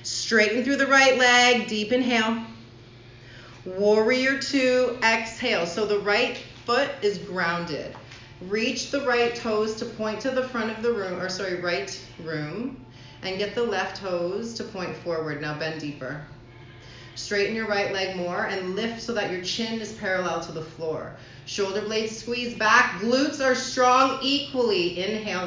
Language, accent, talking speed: English, American, 160 wpm